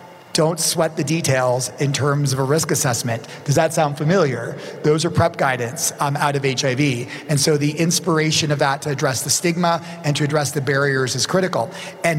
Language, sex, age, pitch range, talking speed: English, male, 30-49, 140-160 Hz, 195 wpm